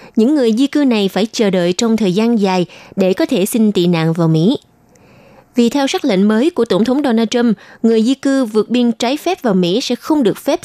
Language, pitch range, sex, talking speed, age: Vietnamese, 185-245 Hz, female, 240 wpm, 20-39